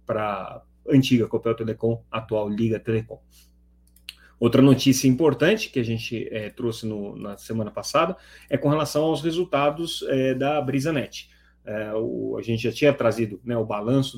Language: Portuguese